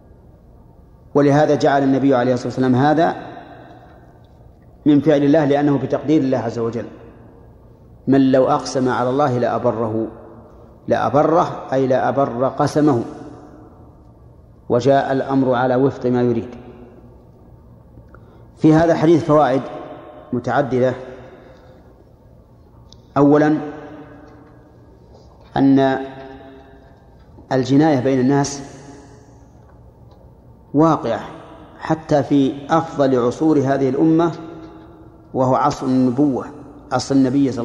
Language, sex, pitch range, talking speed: Arabic, male, 125-145 Hz, 90 wpm